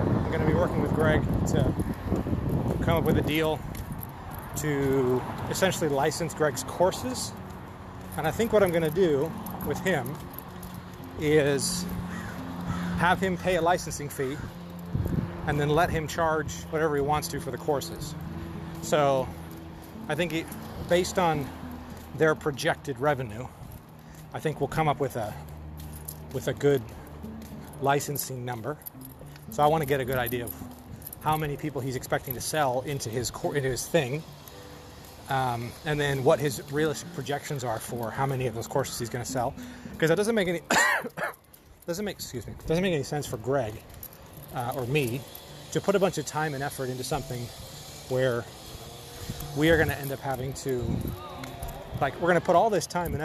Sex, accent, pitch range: male, American, 115-155 Hz